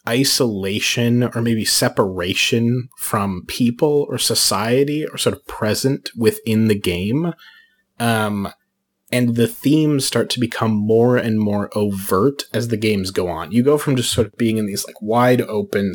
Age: 30-49